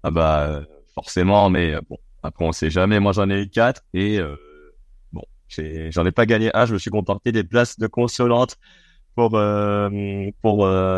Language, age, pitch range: French, 30-49, 85-110 Hz